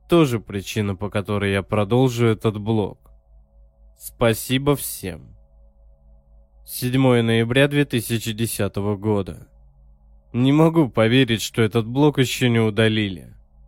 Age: 20-39